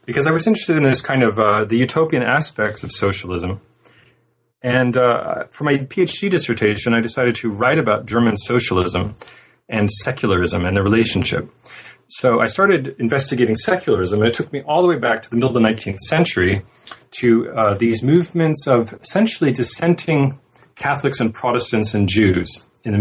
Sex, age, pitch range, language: male, 30-49, 110-135 Hz, English